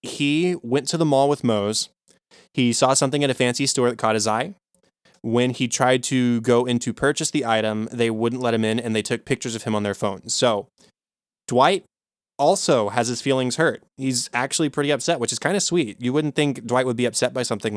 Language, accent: English, American